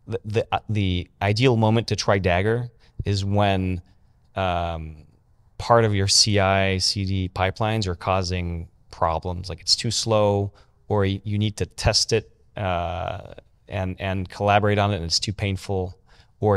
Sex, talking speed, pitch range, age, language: male, 150 wpm, 90-105 Hz, 30-49, English